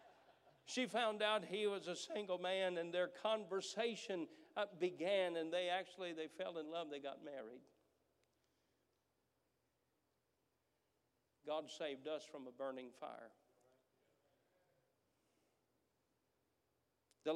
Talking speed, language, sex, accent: 105 wpm, English, male, American